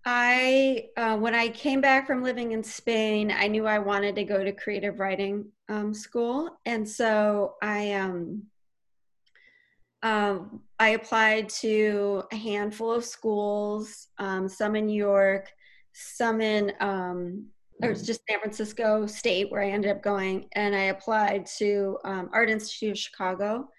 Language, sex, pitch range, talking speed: English, female, 200-235 Hz, 150 wpm